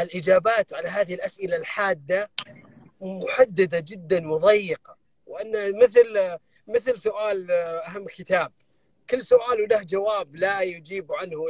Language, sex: Arabic, male